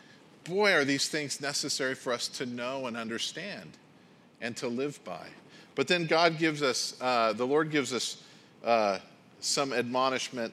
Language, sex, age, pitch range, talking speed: English, male, 40-59, 115-145 Hz, 160 wpm